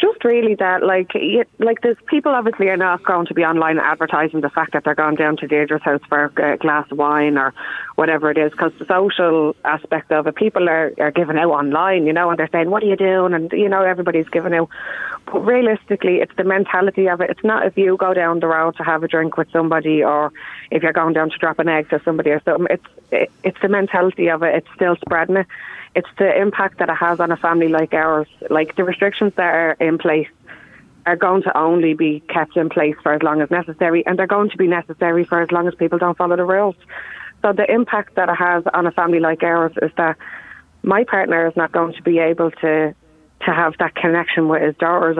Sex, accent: female, Irish